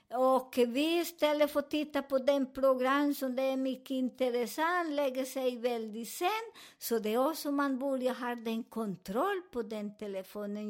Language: Swedish